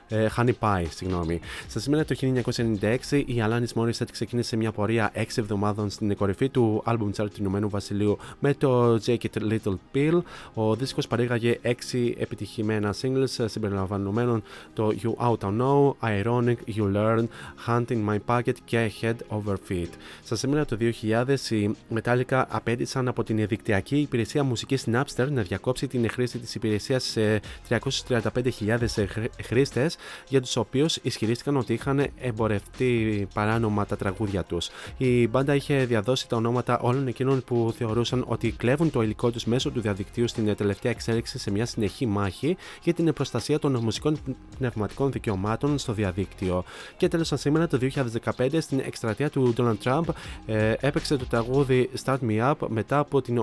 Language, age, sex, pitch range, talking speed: Greek, 20-39, male, 110-130 Hz, 155 wpm